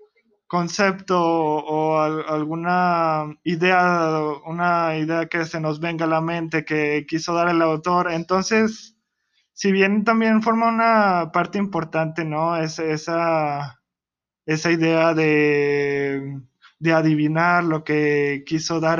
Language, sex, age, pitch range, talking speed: Spanish, male, 20-39, 150-175 Hz, 125 wpm